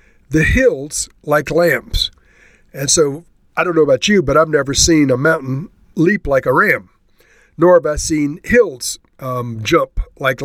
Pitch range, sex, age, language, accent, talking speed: 130-160 Hz, male, 50-69, English, American, 165 wpm